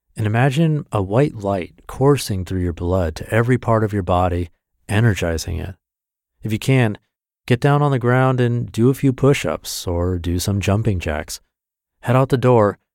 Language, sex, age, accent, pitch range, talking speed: English, male, 30-49, American, 90-120 Hz, 180 wpm